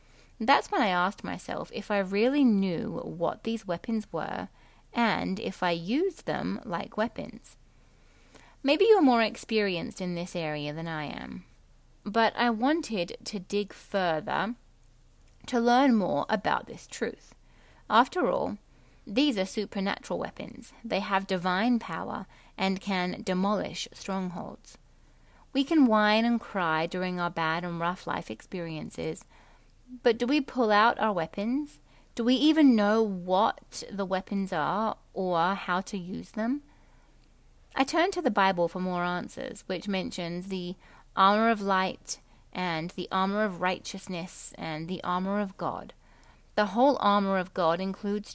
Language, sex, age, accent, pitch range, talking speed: English, female, 30-49, British, 180-230 Hz, 145 wpm